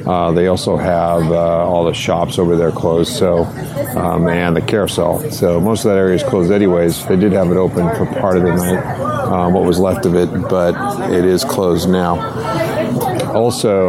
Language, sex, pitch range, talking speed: English, male, 85-100 Hz, 200 wpm